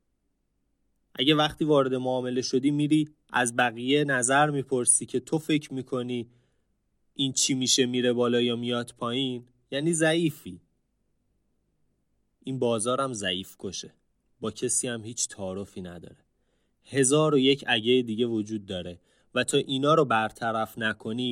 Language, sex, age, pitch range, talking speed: Persian, male, 30-49, 105-135 Hz, 130 wpm